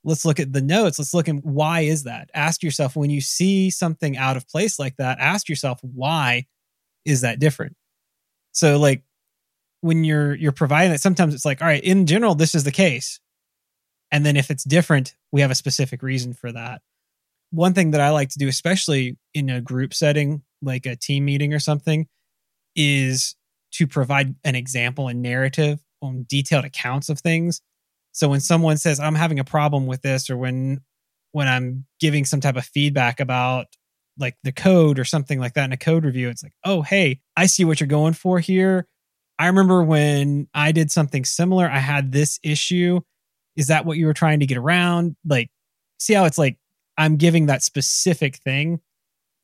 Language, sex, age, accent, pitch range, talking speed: English, male, 20-39, American, 135-165 Hz, 195 wpm